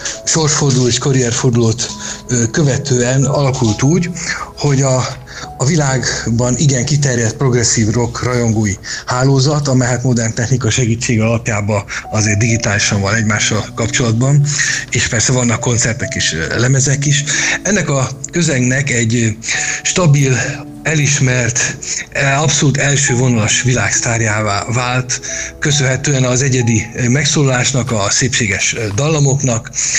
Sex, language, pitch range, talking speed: male, Hungarian, 115-140 Hz, 100 wpm